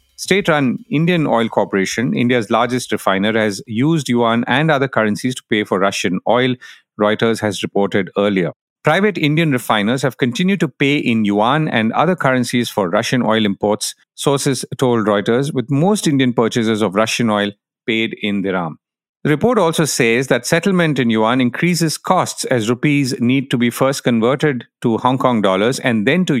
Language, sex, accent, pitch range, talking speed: English, male, Indian, 110-155 Hz, 170 wpm